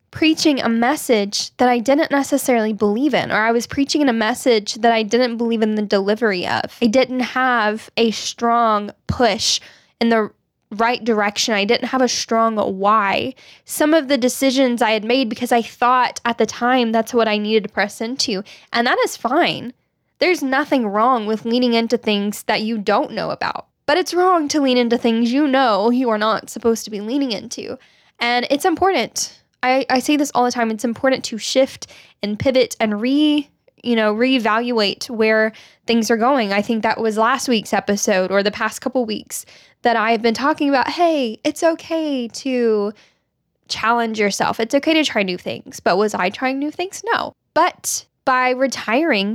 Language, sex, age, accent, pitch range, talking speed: English, female, 10-29, American, 220-265 Hz, 190 wpm